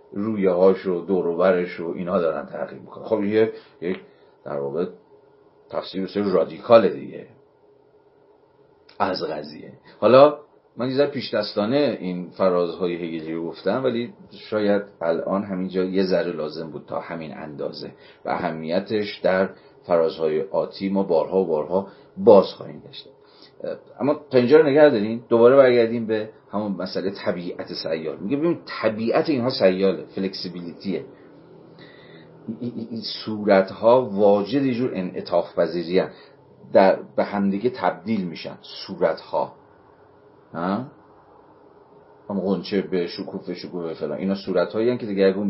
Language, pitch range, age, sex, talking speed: Persian, 95-130 Hz, 40-59, male, 130 wpm